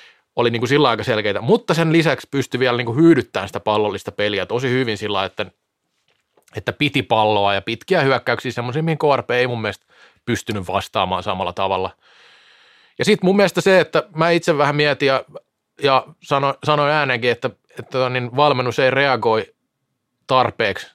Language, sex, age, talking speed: Finnish, male, 30-49, 165 wpm